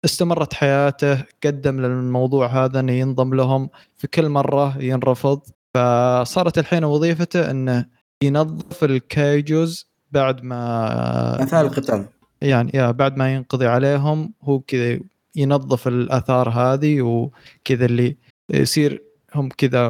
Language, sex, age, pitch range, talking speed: Arabic, male, 20-39, 125-145 Hz, 110 wpm